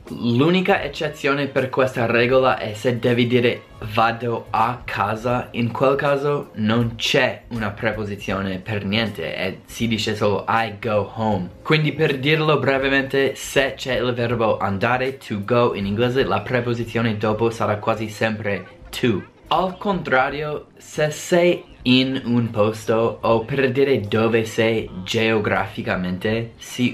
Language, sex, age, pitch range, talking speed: Italian, male, 20-39, 105-125 Hz, 140 wpm